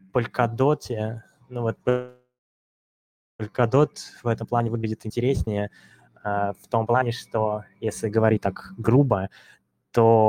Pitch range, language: 110-120 Hz, Russian